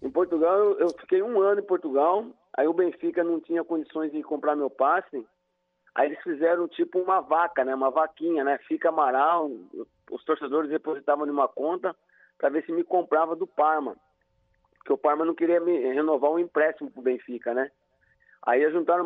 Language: Portuguese